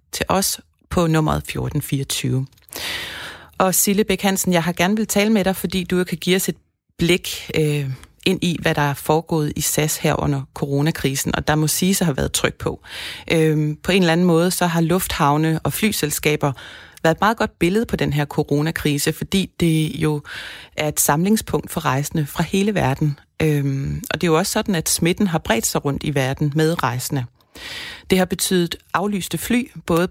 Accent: native